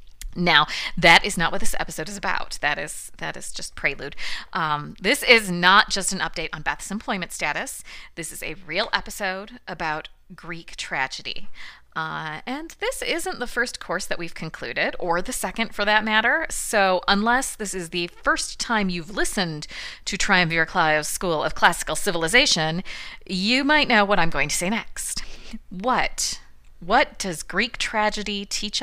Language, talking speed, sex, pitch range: English, 170 wpm, female, 160-210 Hz